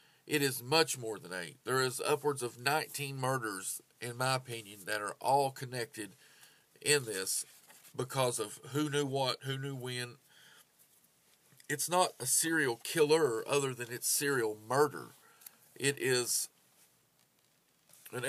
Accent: American